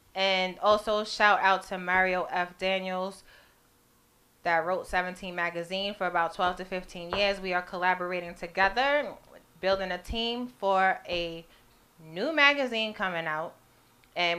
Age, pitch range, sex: 20-39, 175-205 Hz, female